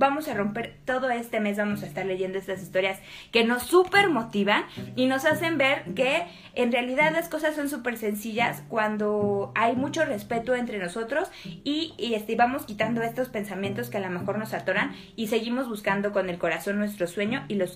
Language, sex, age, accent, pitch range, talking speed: Spanish, female, 20-39, Mexican, 205-275 Hz, 195 wpm